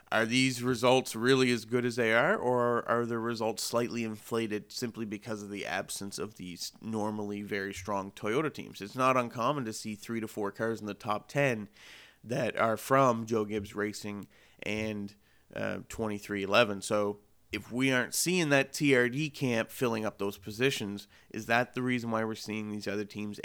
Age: 30-49